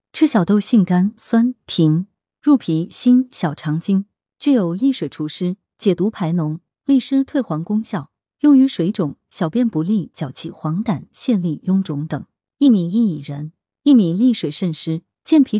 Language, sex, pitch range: Chinese, female, 165-235 Hz